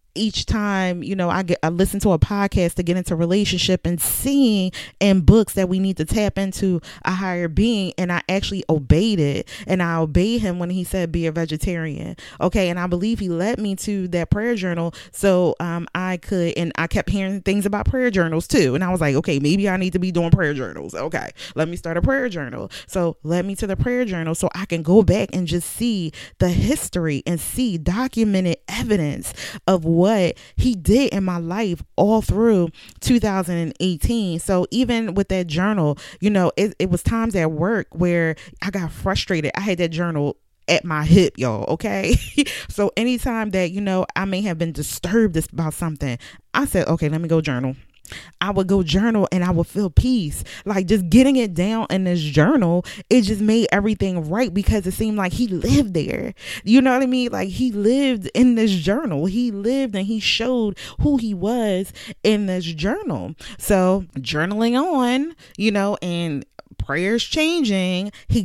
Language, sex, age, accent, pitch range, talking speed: English, female, 20-39, American, 170-210 Hz, 195 wpm